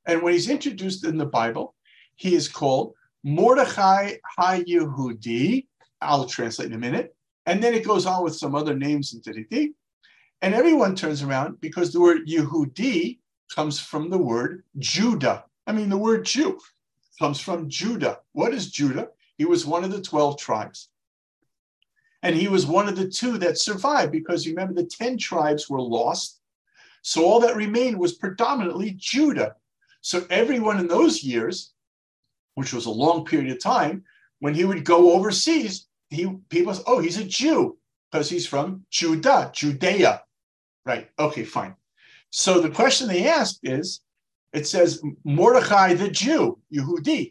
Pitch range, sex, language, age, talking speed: 155-220 Hz, male, English, 50-69, 160 wpm